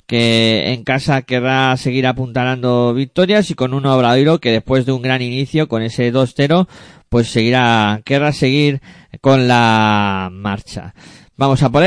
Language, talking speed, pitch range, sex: Spanish, 150 wpm, 120-155 Hz, male